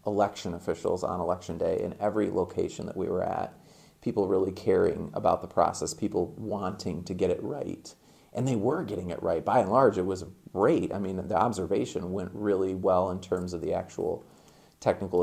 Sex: male